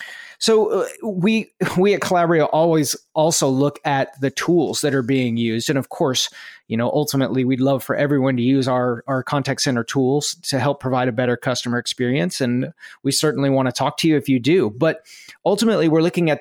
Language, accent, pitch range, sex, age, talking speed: English, American, 130-155 Hz, male, 30-49, 200 wpm